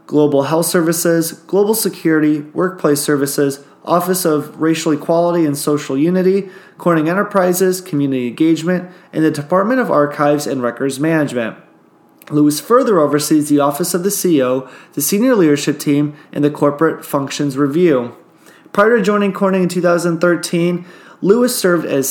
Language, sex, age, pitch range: English, male, 20-39, 140-180 Hz